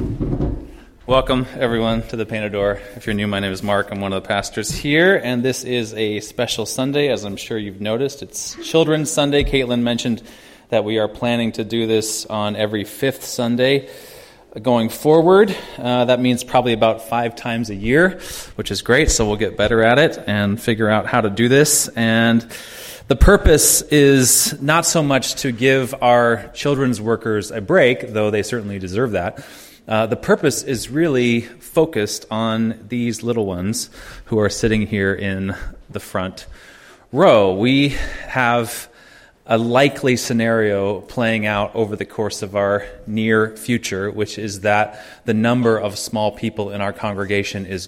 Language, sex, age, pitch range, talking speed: English, male, 20-39, 105-125 Hz, 170 wpm